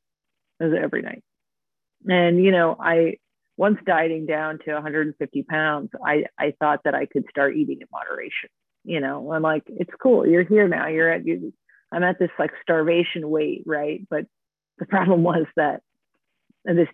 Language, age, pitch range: English, 40-59, 150-175 Hz